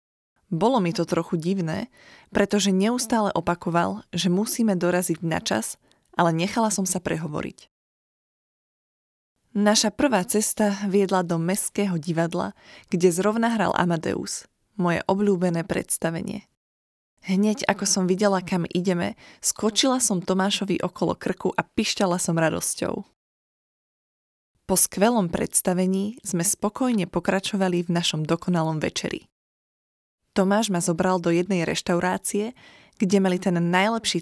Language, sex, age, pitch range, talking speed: Slovak, female, 20-39, 175-210 Hz, 115 wpm